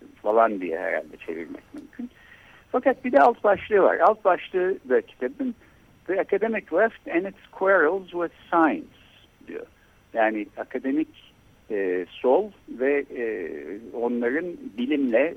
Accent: native